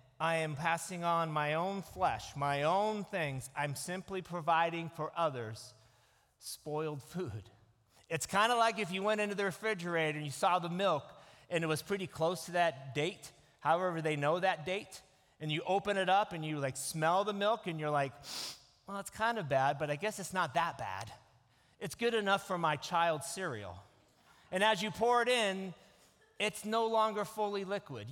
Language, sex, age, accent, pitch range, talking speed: English, male, 30-49, American, 135-195 Hz, 190 wpm